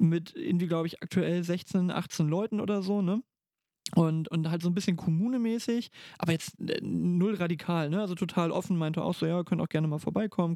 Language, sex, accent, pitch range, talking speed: German, male, German, 165-190 Hz, 200 wpm